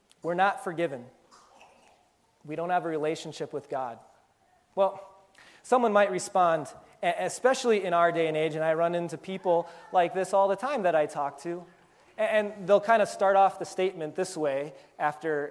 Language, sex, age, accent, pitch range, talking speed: English, male, 30-49, American, 165-230 Hz, 175 wpm